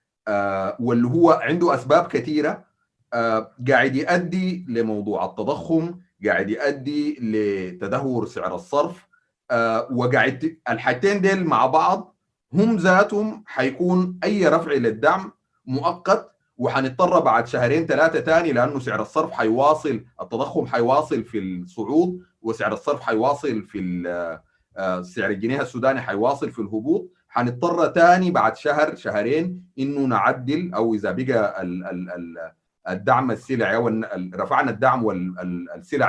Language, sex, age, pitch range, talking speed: Arabic, male, 30-49, 110-170 Hz, 110 wpm